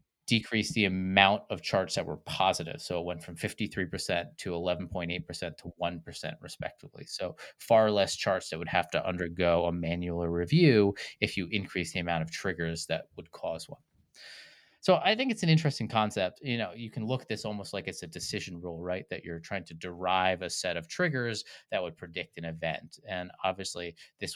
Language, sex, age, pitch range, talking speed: English, male, 30-49, 90-110 Hz, 195 wpm